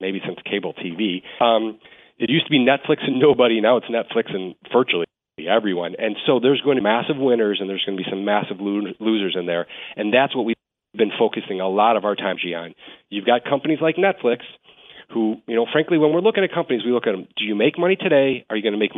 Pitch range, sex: 105-135 Hz, male